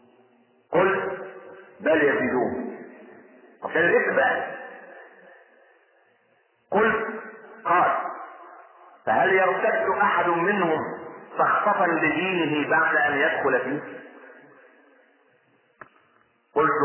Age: 50-69